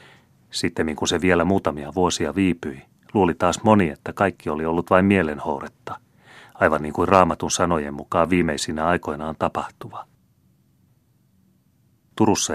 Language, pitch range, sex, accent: Finnish, 75-90 Hz, male, native